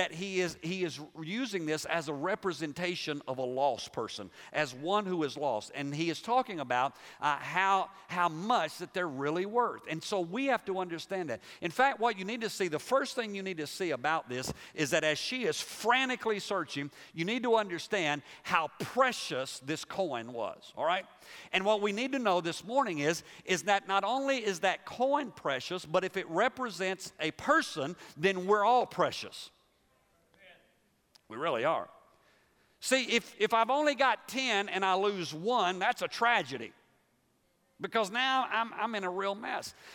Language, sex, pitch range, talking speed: English, male, 165-230 Hz, 185 wpm